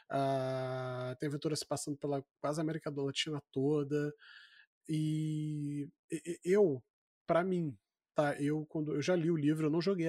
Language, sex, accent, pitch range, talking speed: Portuguese, male, Brazilian, 145-180 Hz, 155 wpm